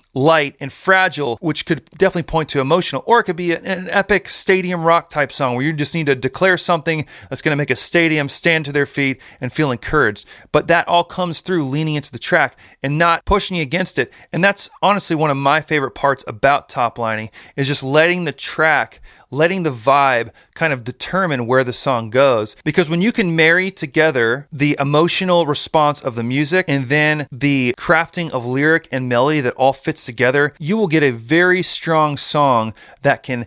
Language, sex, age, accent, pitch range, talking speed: English, male, 30-49, American, 135-175 Hz, 200 wpm